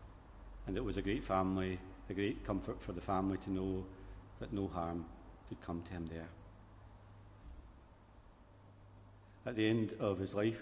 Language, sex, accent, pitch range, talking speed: English, male, British, 95-100 Hz, 160 wpm